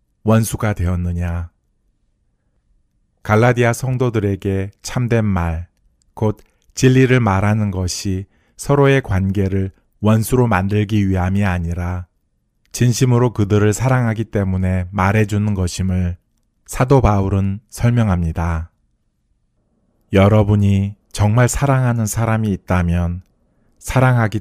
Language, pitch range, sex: Korean, 90-110 Hz, male